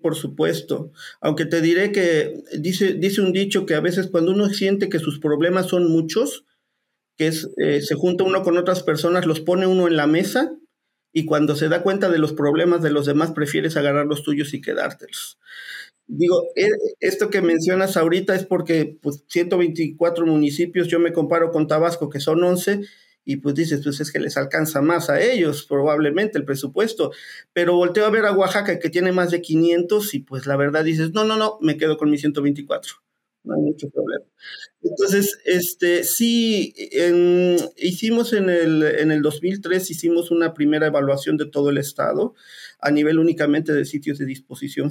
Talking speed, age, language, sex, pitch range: 185 wpm, 40-59, Spanish, male, 145-180 Hz